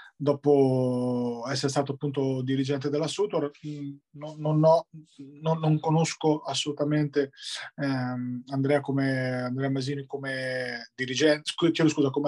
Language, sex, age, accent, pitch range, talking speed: Italian, male, 20-39, native, 130-150 Hz, 110 wpm